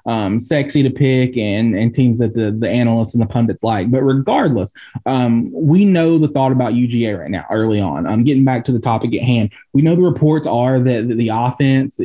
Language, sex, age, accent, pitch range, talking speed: English, male, 20-39, American, 115-145 Hz, 230 wpm